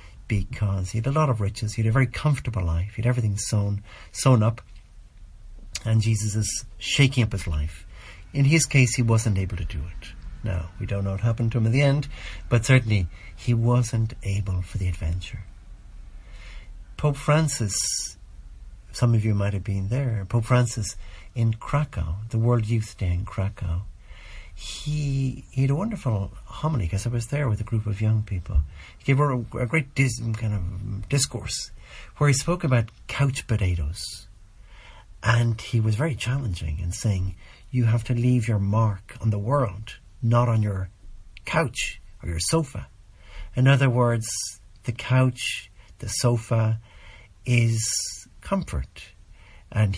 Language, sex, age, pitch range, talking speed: English, male, 60-79, 95-120 Hz, 165 wpm